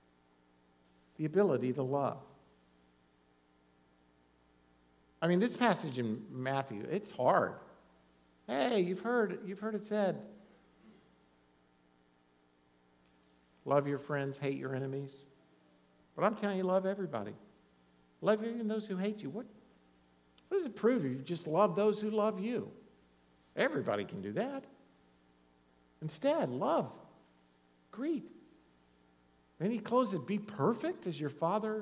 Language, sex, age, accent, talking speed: English, male, 50-69, American, 125 wpm